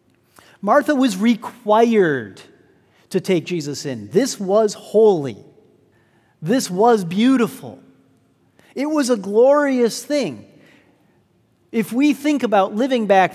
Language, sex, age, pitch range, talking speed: English, male, 40-59, 160-220 Hz, 110 wpm